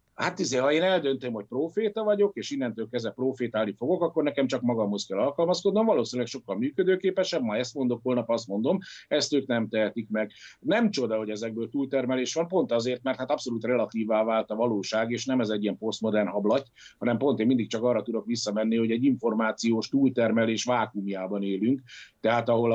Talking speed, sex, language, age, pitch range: 185 wpm, male, Hungarian, 50-69, 110-140 Hz